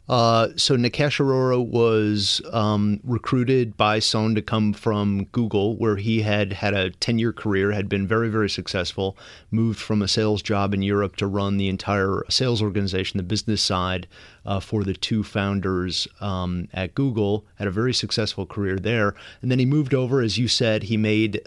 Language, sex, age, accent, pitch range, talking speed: English, male, 30-49, American, 100-120 Hz, 180 wpm